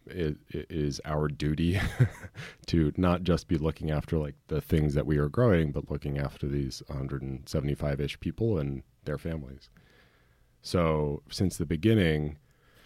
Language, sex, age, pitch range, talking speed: English, male, 30-49, 70-80 Hz, 145 wpm